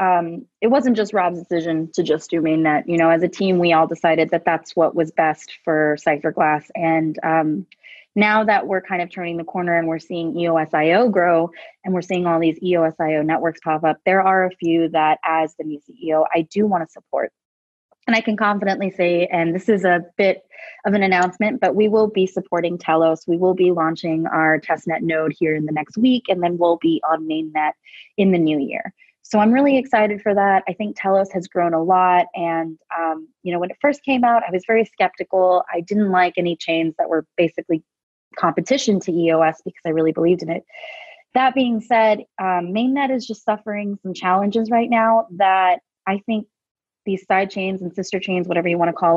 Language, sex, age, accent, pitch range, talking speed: English, female, 20-39, American, 165-210 Hz, 210 wpm